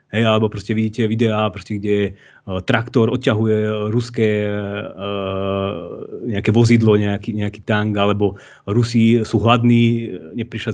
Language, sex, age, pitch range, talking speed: Slovak, male, 30-49, 105-120 Hz, 125 wpm